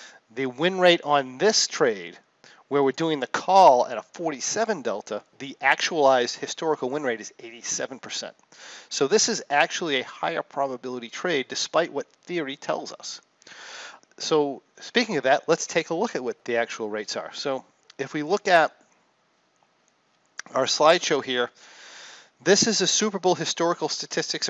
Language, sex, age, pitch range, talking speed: English, male, 40-59, 125-160 Hz, 155 wpm